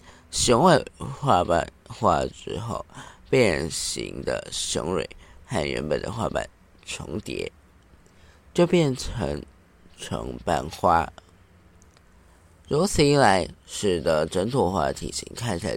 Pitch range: 85-100 Hz